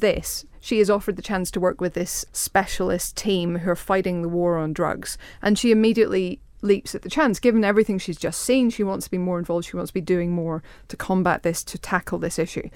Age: 30-49